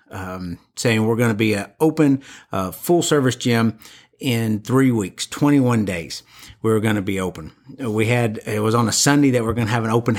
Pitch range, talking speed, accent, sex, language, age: 110-130 Hz, 220 wpm, American, male, English, 50-69